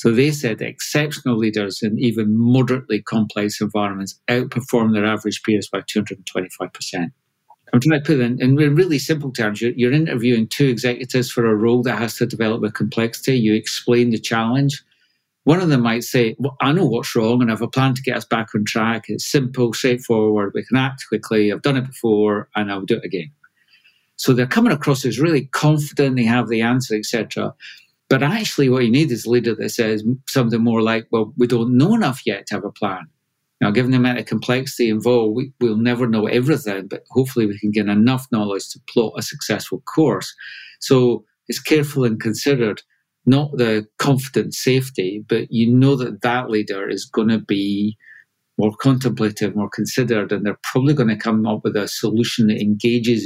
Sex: male